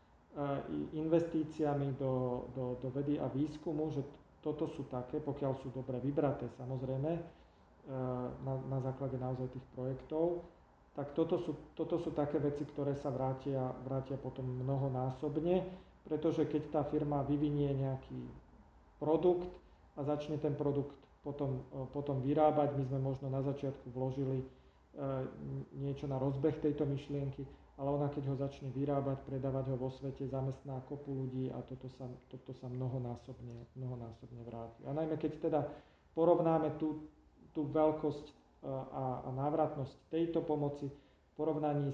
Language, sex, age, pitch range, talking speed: Slovak, male, 40-59, 130-150 Hz, 135 wpm